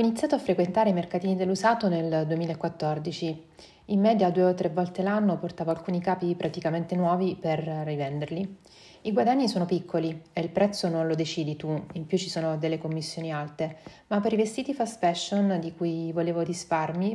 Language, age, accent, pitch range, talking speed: Italian, 30-49, native, 165-195 Hz, 180 wpm